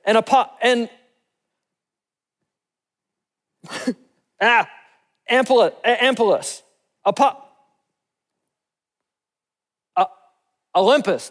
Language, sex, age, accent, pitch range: English, male, 40-59, American, 200-260 Hz